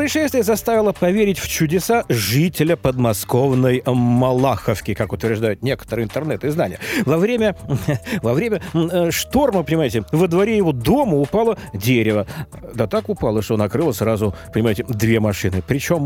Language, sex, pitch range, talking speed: Russian, male, 110-185 Hz, 125 wpm